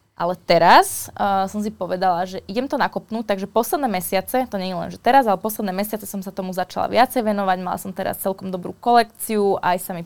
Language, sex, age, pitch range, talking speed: Slovak, female, 20-39, 190-220 Hz, 215 wpm